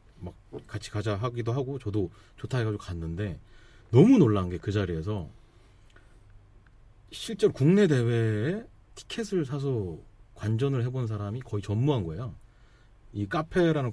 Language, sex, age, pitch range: Korean, male, 30-49, 105-150 Hz